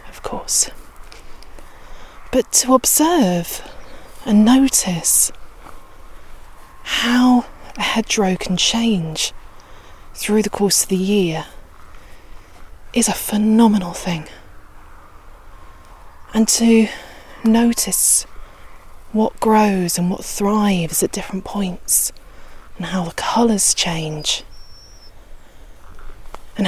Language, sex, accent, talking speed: English, female, British, 90 wpm